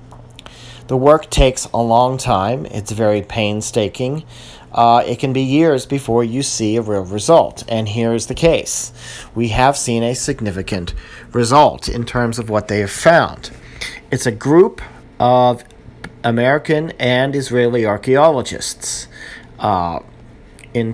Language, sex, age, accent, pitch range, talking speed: English, male, 40-59, American, 115-130 Hz, 140 wpm